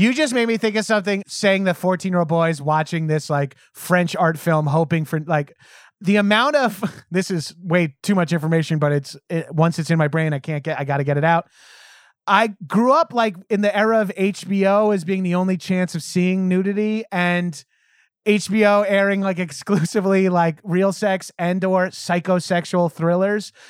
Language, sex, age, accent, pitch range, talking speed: English, male, 30-49, American, 175-225 Hz, 190 wpm